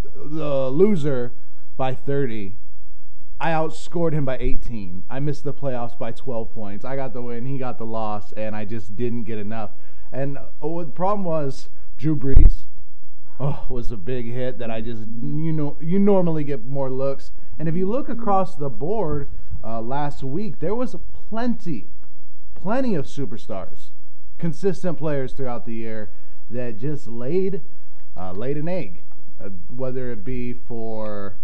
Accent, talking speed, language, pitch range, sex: American, 155 wpm, English, 105-145 Hz, male